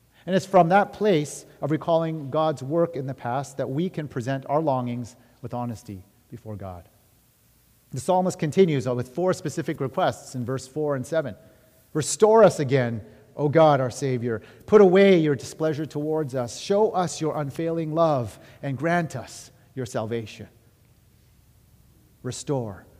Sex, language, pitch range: male, English, 125-160 Hz